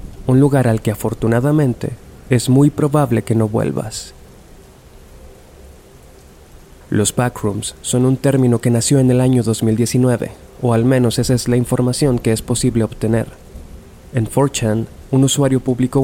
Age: 30-49